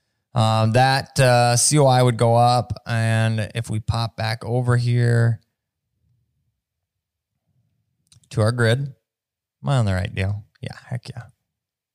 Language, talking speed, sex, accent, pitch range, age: English, 130 wpm, male, American, 110-135 Hz, 20-39